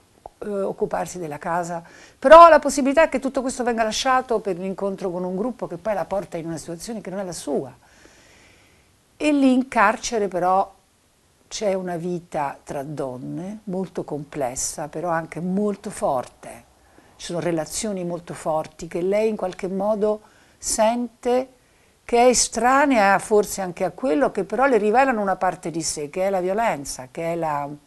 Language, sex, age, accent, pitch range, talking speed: Italian, female, 60-79, native, 155-220 Hz, 170 wpm